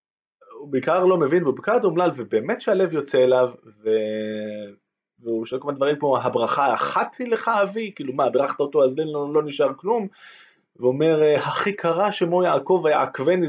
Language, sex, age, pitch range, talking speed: Hebrew, male, 20-39, 115-165 Hz, 170 wpm